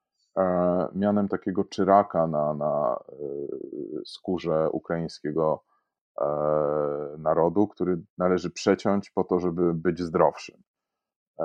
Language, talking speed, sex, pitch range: Polish, 85 wpm, male, 85-100 Hz